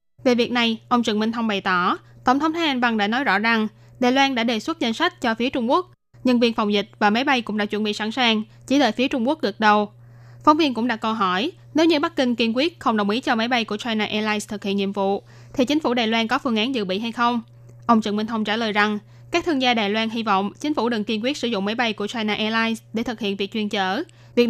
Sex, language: female, Vietnamese